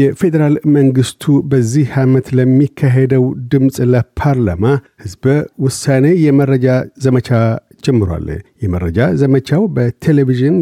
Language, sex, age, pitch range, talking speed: Amharic, male, 50-69, 120-145 Hz, 85 wpm